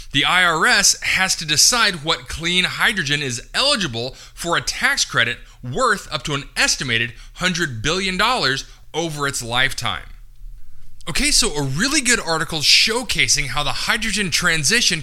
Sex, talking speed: male, 140 wpm